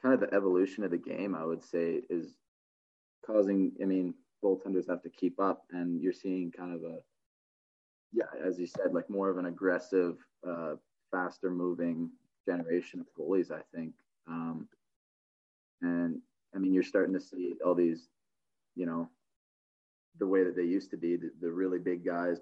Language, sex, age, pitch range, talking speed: English, male, 20-39, 85-95 Hz, 175 wpm